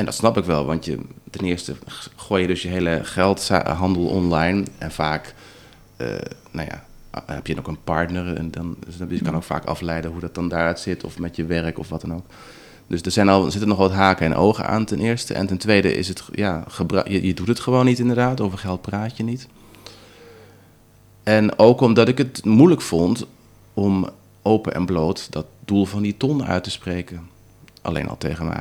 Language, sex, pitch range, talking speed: Dutch, male, 85-105 Hz, 215 wpm